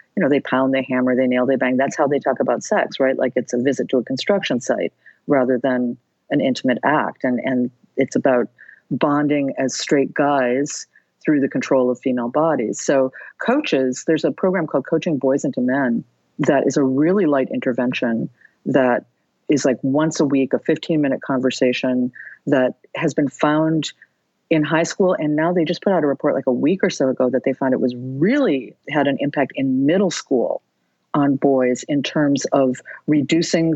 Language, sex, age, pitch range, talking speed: English, female, 50-69, 130-160 Hz, 195 wpm